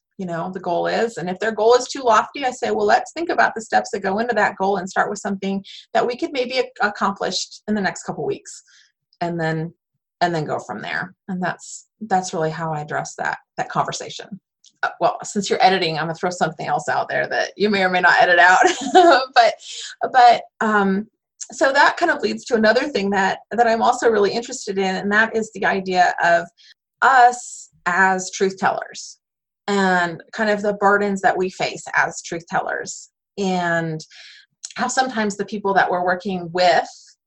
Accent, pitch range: American, 180-235 Hz